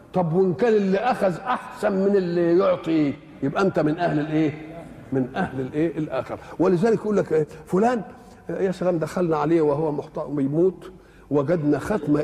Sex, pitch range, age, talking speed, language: male, 150-205 Hz, 50-69, 150 wpm, Arabic